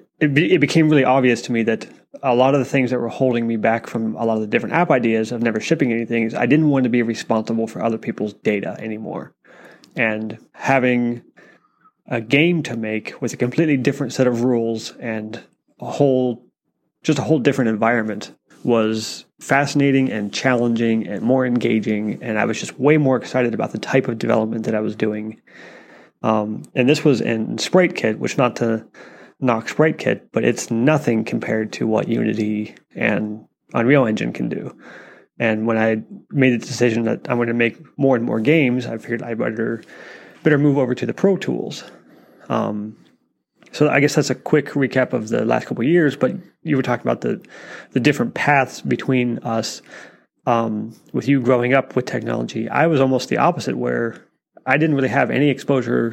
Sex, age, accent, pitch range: male, 30-49, American, 110-135 Hz